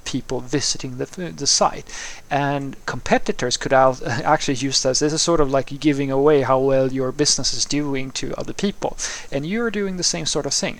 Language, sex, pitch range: English, male, 130-155 Hz